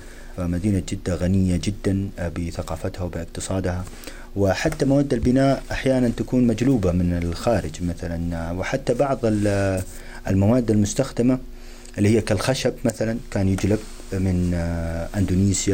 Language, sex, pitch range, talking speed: Arabic, male, 85-110 Hz, 105 wpm